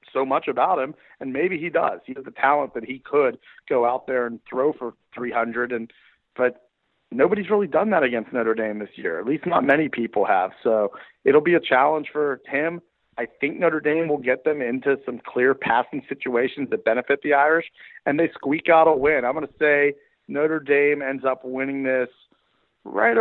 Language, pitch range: English, 120-145 Hz